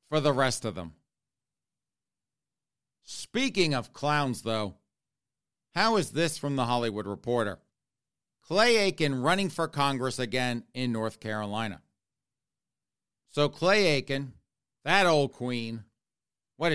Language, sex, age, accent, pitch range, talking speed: English, male, 40-59, American, 115-155 Hz, 115 wpm